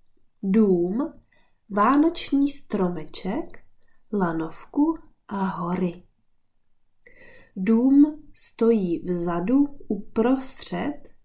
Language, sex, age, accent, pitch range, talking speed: Czech, female, 20-39, native, 180-275 Hz, 55 wpm